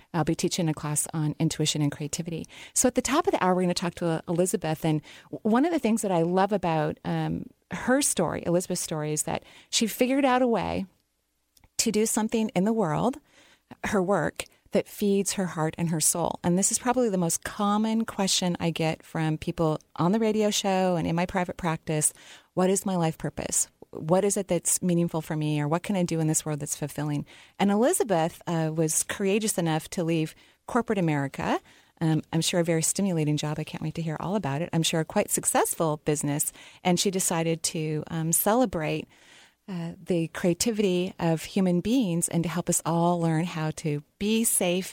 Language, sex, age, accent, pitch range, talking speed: English, female, 30-49, American, 155-195 Hz, 205 wpm